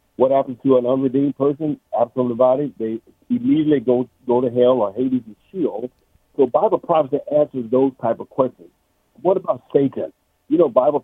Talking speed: 175 wpm